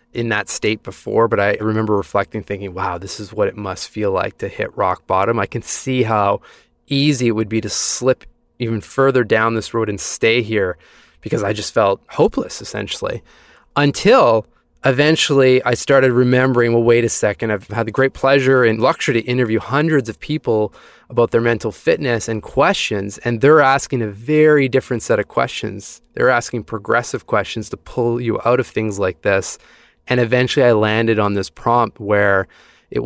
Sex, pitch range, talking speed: male, 105-125 Hz, 185 wpm